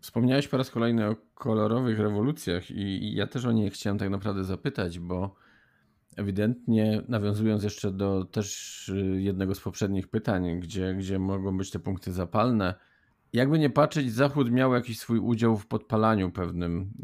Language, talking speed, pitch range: Polish, 155 wpm, 95-110 Hz